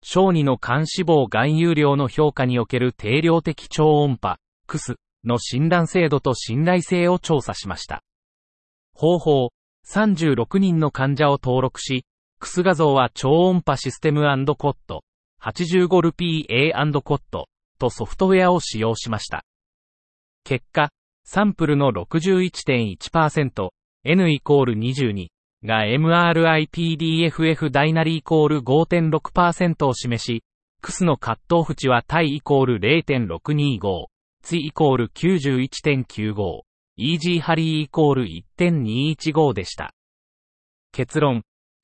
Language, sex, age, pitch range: Japanese, male, 40-59, 120-165 Hz